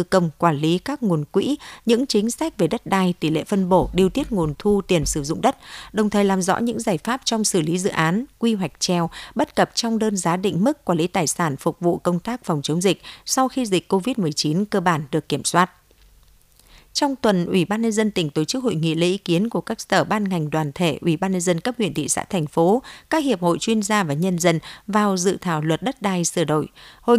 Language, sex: Vietnamese, female